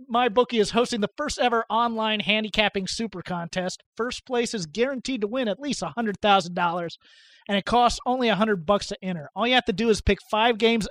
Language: English